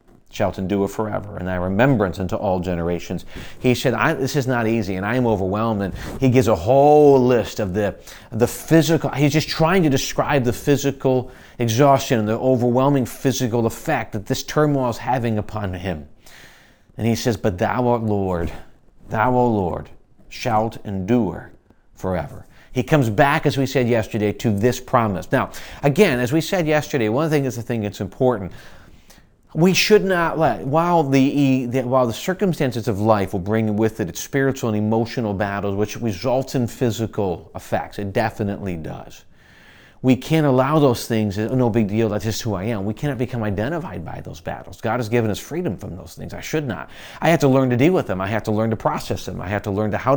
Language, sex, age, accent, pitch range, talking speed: English, male, 40-59, American, 105-135 Hz, 200 wpm